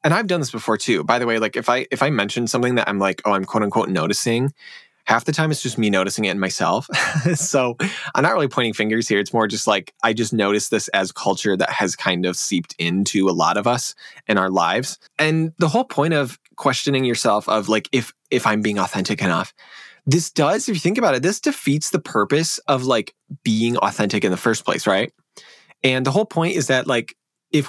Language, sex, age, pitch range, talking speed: English, male, 20-39, 105-140 Hz, 230 wpm